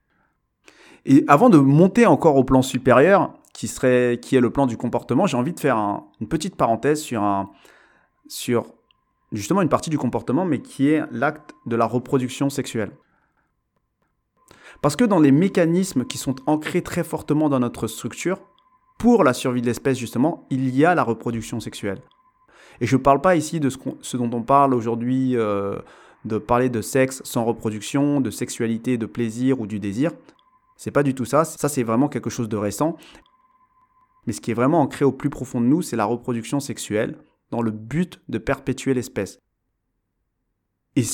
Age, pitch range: 30-49, 115-145 Hz